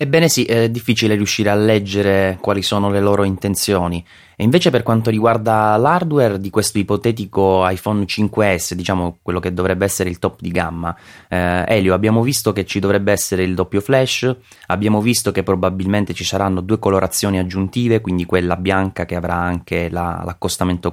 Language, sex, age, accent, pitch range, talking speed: Italian, male, 20-39, native, 85-100 Hz, 170 wpm